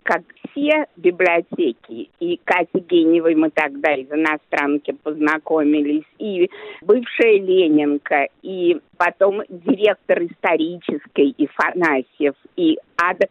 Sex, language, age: female, Russian, 50-69